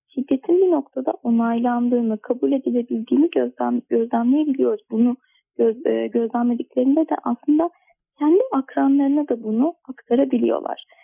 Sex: female